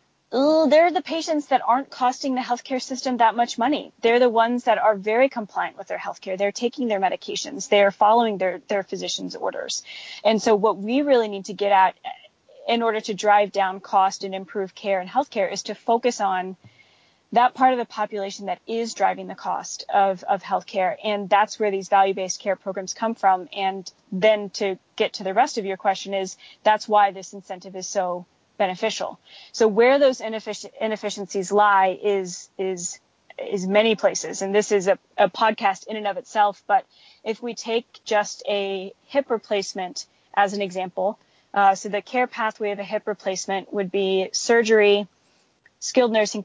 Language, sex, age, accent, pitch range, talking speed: English, female, 20-39, American, 195-235 Hz, 180 wpm